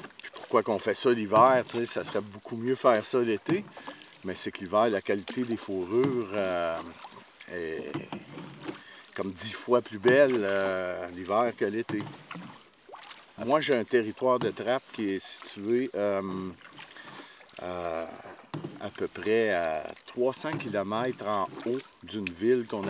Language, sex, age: French, male, 50-69